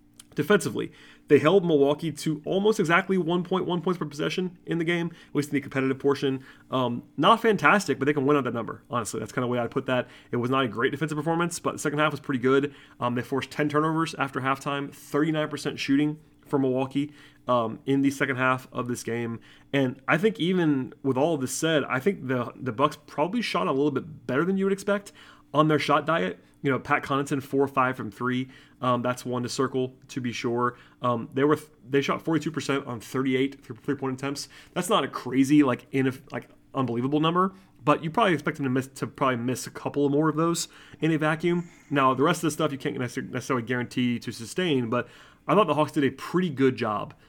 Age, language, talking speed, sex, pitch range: 30-49, English, 225 wpm, male, 130-155 Hz